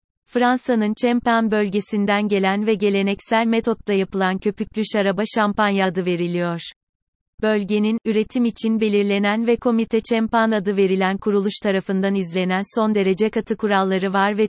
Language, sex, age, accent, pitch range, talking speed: Turkish, female, 30-49, native, 195-220 Hz, 130 wpm